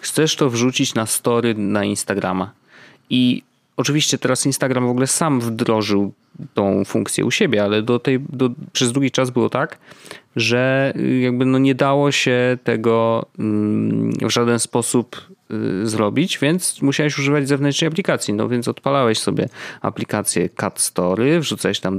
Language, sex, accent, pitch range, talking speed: Polish, male, native, 110-145 Hz, 145 wpm